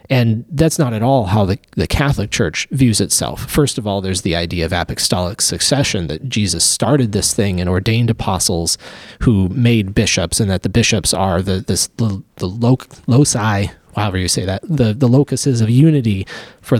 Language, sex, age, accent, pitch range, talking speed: English, male, 30-49, American, 95-125 Hz, 190 wpm